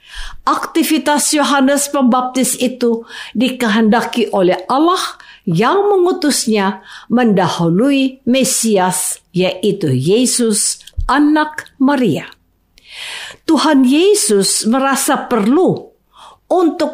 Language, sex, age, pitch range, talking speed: Indonesian, female, 50-69, 195-285 Hz, 70 wpm